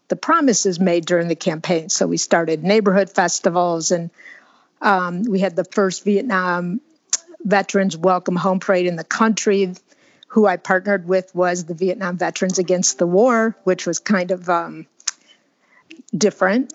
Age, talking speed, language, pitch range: 50-69, 150 wpm, English, 180-220 Hz